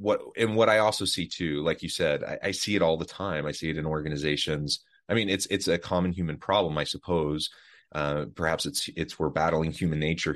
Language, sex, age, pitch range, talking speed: English, male, 30-49, 80-95 Hz, 230 wpm